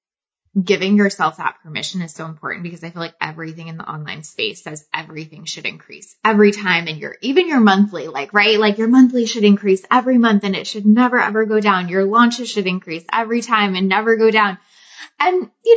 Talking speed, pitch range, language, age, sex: 210 wpm, 185-230 Hz, English, 20-39, female